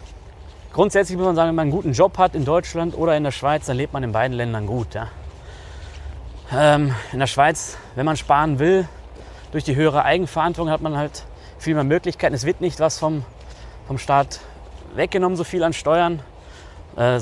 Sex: male